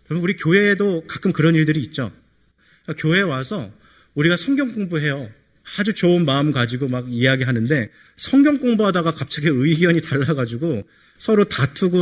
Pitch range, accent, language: 115-160 Hz, native, Korean